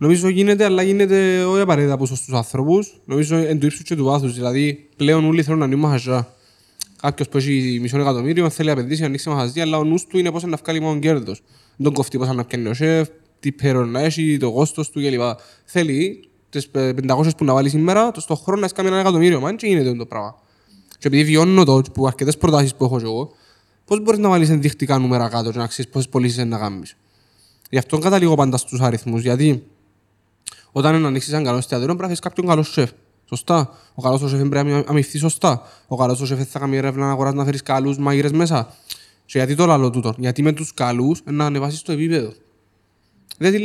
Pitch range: 125-160 Hz